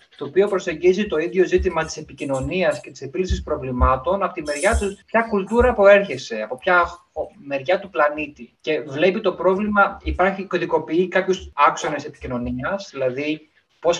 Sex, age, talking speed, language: male, 20-39, 155 wpm, Greek